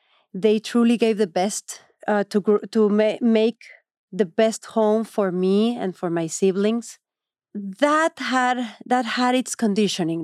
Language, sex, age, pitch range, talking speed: English, female, 40-59, 205-260 Hz, 150 wpm